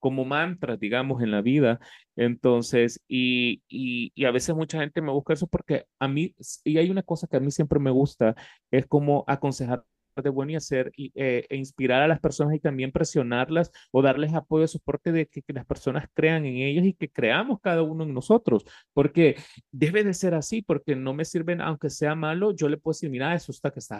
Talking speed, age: 220 wpm, 30-49